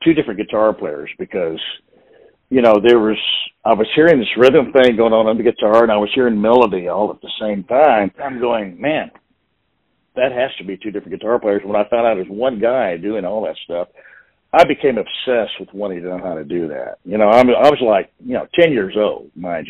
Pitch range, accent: 100-125 Hz, American